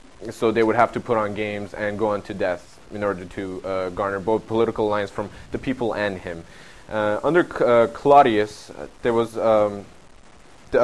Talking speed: 200 wpm